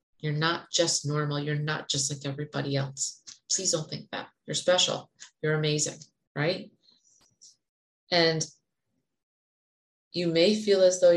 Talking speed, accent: 135 wpm, American